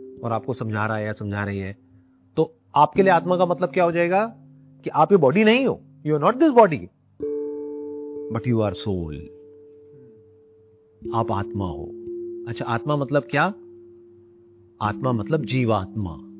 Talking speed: 155 wpm